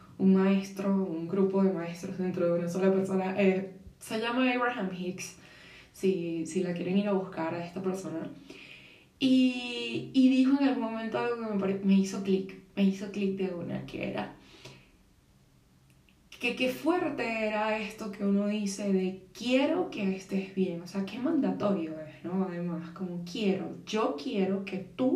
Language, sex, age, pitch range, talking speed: Spanish, female, 20-39, 190-240 Hz, 165 wpm